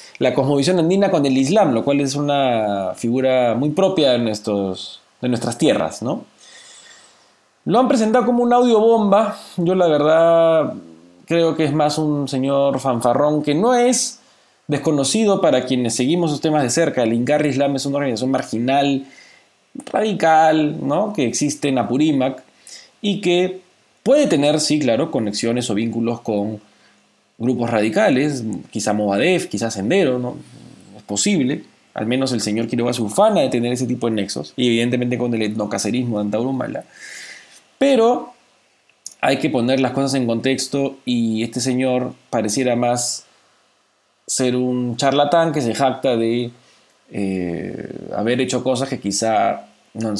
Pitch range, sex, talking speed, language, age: 115-155 Hz, male, 145 wpm, Spanish, 20-39